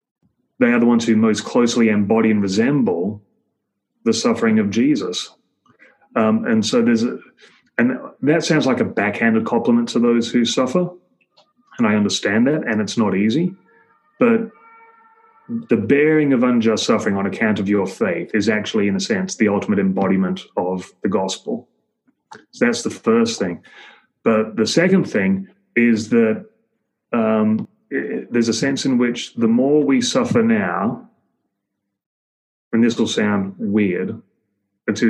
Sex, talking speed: male, 150 wpm